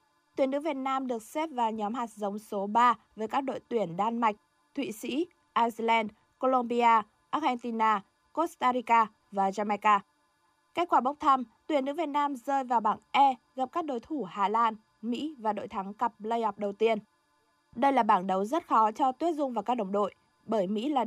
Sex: female